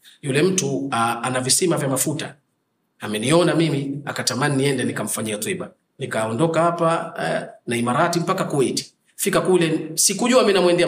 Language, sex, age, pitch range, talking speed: Swahili, male, 40-59, 150-190 Hz, 125 wpm